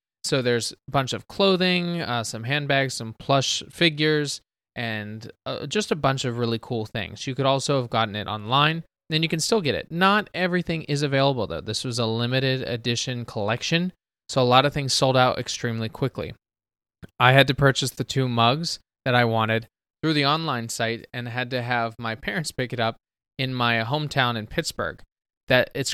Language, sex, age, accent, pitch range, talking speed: English, male, 20-39, American, 115-145 Hz, 195 wpm